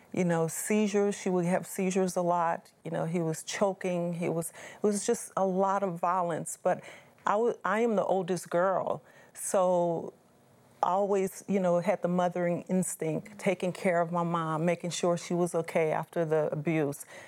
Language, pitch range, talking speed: English, 165-185 Hz, 185 wpm